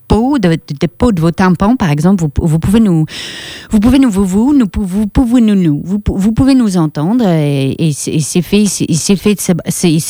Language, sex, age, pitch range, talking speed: French, female, 40-59, 160-210 Hz, 225 wpm